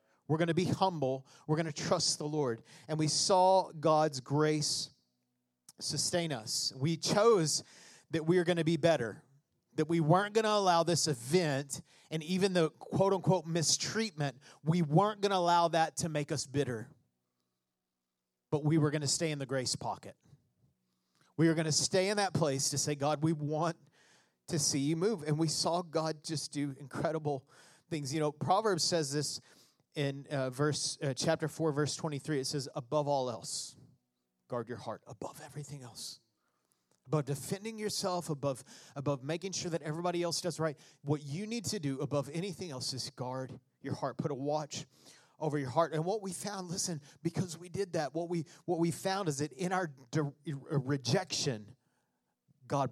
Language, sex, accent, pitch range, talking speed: English, male, American, 135-170 Hz, 180 wpm